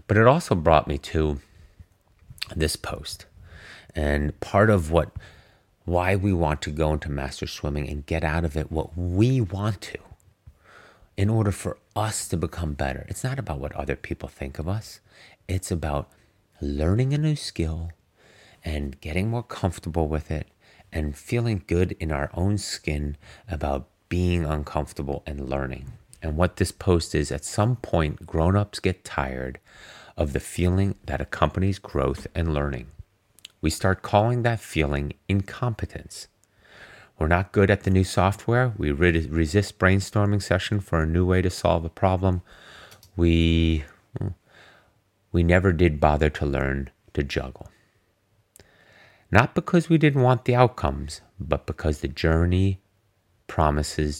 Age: 30-49